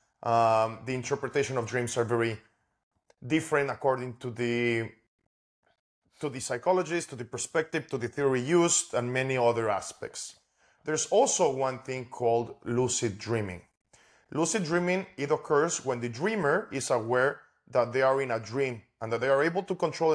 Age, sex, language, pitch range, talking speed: 30-49, male, English, 120-145 Hz, 160 wpm